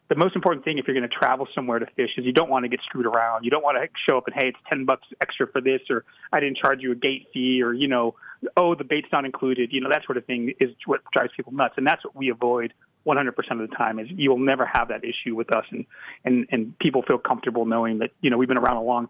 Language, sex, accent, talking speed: English, male, American, 300 wpm